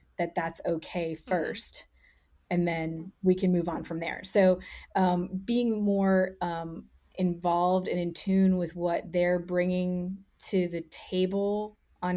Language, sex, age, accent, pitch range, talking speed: English, female, 30-49, American, 175-195 Hz, 145 wpm